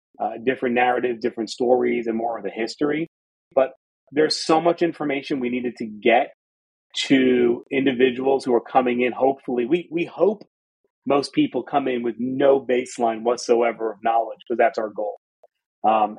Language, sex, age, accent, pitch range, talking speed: English, male, 30-49, American, 120-145 Hz, 165 wpm